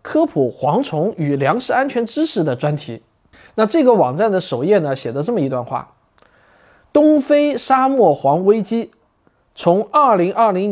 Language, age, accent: Chinese, 20-39, native